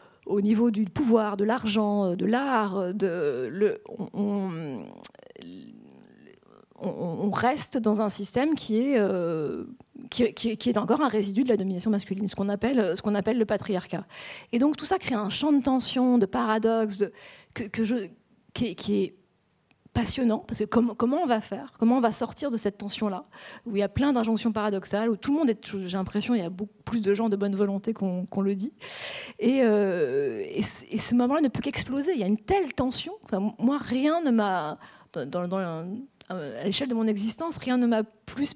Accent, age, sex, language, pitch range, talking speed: French, 20-39, female, French, 205-245 Hz, 200 wpm